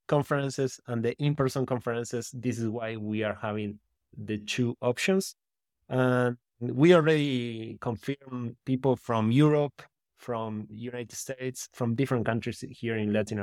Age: 20-39